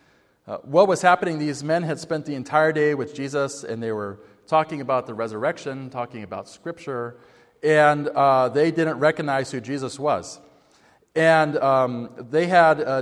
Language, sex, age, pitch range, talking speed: English, male, 40-59, 120-150 Hz, 165 wpm